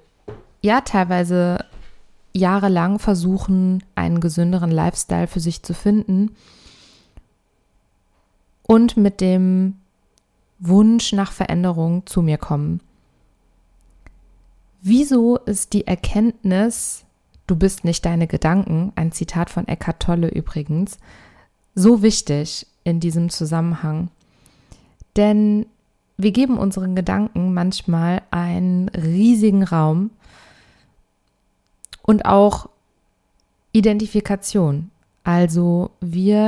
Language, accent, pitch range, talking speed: German, German, 170-210 Hz, 90 wpm